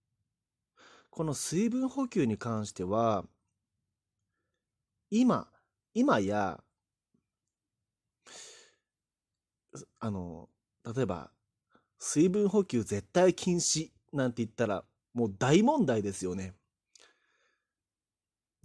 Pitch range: 105-165 Hz